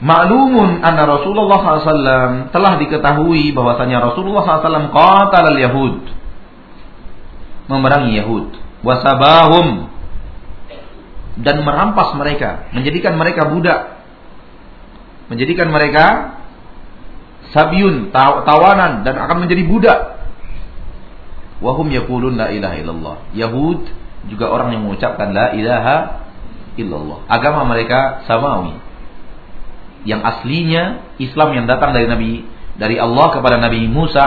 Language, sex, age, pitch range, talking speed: Malay, male, 40-59, 110-160 Hz, 100 wpm